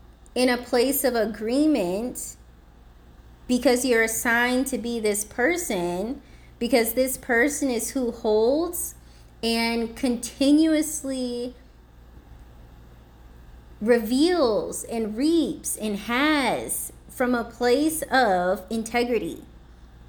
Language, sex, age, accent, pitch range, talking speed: English, female, 20-39, American, 200-255 Hz, 90 wpm